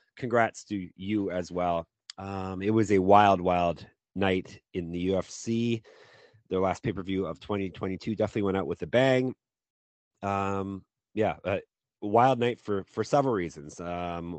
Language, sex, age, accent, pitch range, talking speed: English, male, 30-49, American, 90-110 Hz, 150 wpm